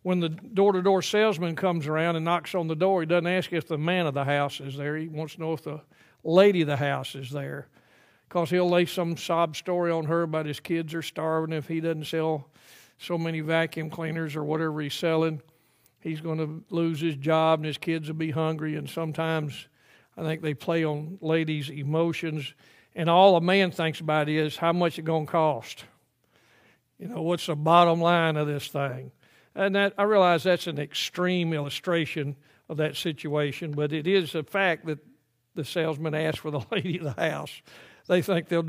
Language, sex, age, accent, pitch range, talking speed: English, male, 50-69, American, 155-170 Hz, 205 wpm